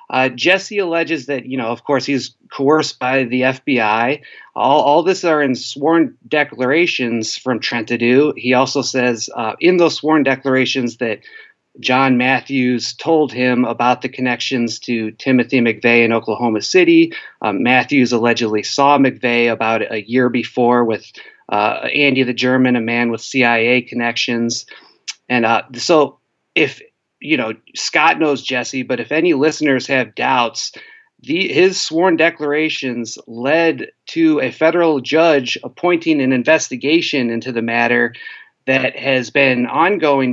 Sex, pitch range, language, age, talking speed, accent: male, 125-155 Hz, English, 30-49, 145 wpm, American